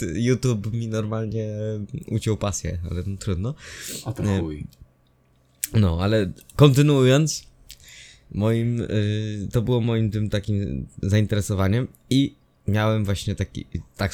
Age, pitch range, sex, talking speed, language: 20-39, 100-125 Hz, male, 100 wpm, Polish